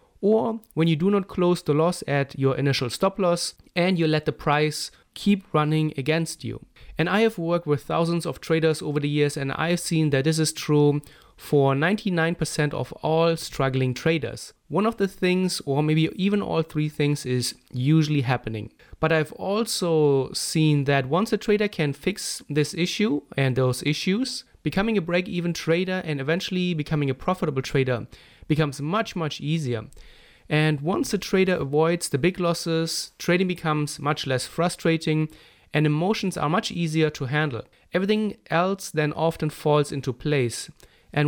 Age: 30-49